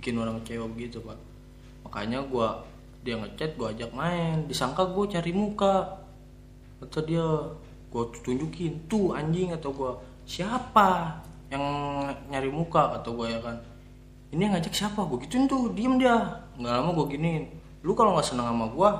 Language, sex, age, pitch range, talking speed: Indonesian, male, 20-39, 125-200 Hz, 160 wpm